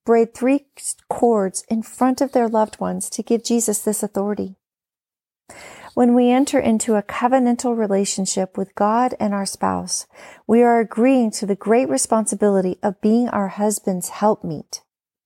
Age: 40-59